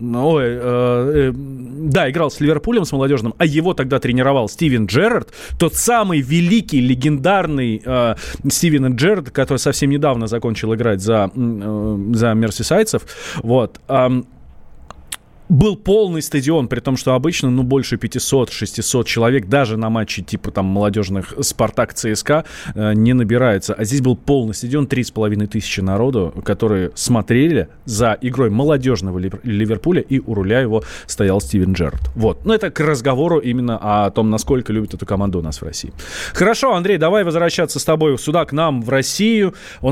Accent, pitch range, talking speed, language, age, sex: native, 115-165 Hz, 145 wpm, Russian, 20-39, male